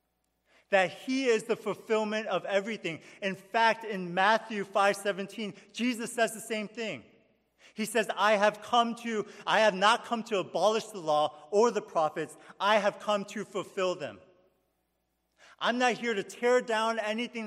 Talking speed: 160 wpm